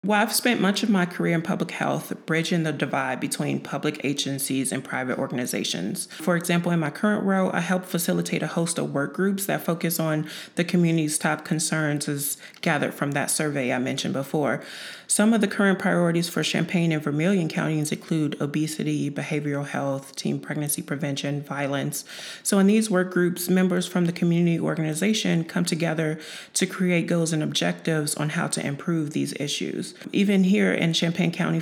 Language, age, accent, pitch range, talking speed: English, 30-49, American, 150-180 Hz, 180 wpm